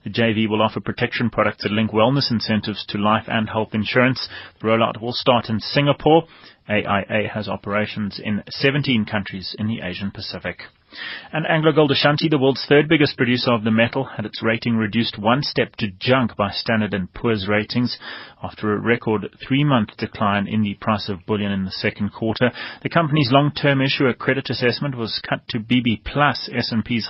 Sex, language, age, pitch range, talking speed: male, English, 30-49, 105-125 Hz, 175 wpm